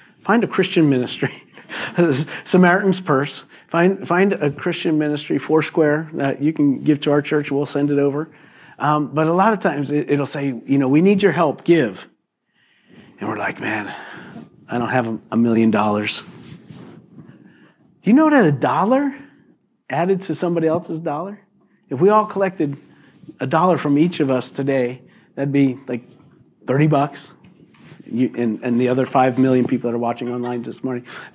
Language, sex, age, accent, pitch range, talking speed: English, male, 40-59, American, 135-180 Hz, 175 wpm